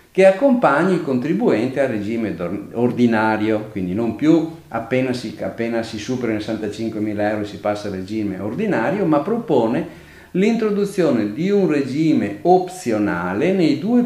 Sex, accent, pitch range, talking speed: male, native, 110-175 Hz, 135 wpm